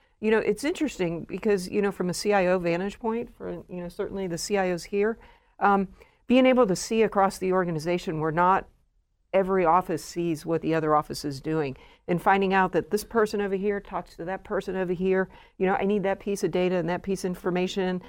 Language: English